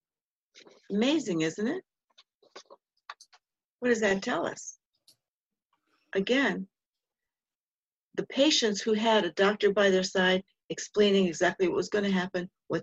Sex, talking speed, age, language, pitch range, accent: female, 120 wpm, 60-79, English, 190-240 Hz, American